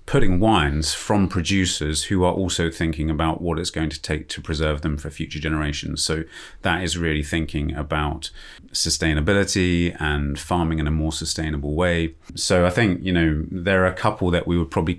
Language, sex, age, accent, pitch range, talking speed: English, male, 30-49, British, 80-90 Hz, 190 wpm